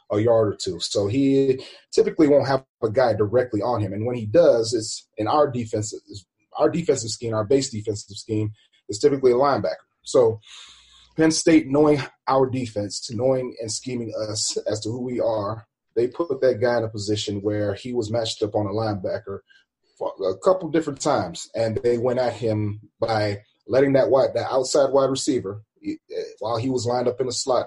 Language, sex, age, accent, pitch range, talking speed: English, male, 30-49, American, 110-135 Hz, 195 wpm